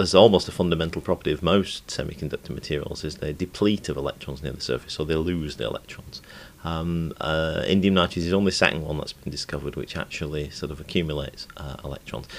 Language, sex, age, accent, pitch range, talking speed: English, male, 40-59, British, 70-85 Hz, 195 wpm